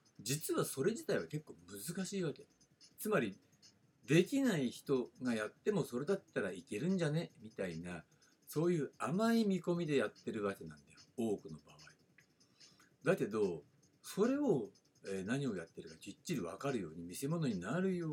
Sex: male